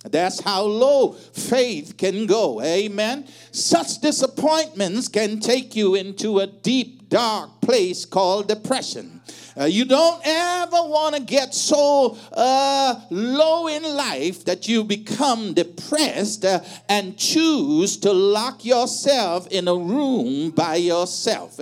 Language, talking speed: English, 120 wpm